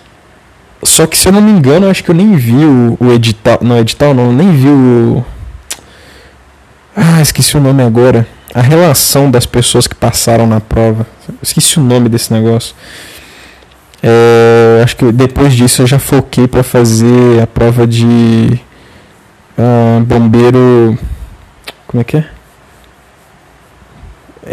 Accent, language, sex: Brazilian, Portuguese, male